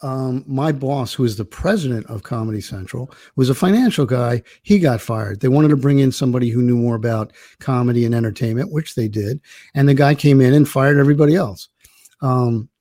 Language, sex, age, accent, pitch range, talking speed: English, male, 50-69, American, 120-145 Hz, 200 wpm